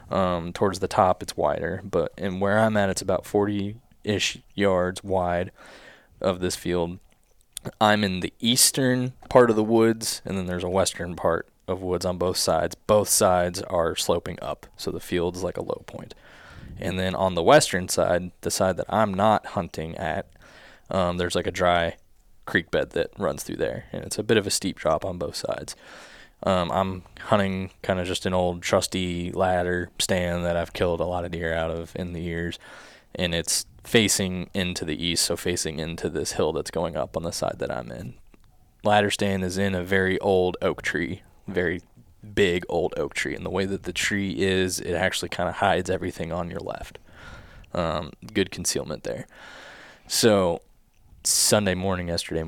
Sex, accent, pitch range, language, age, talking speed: male, American, 85-100 Hz, English, 20-39, 190 wpm